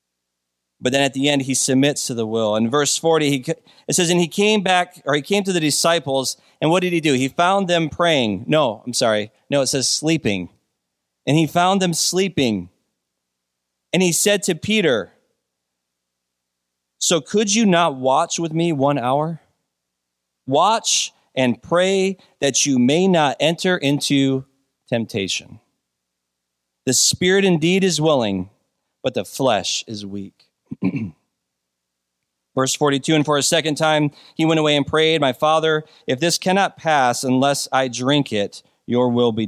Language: English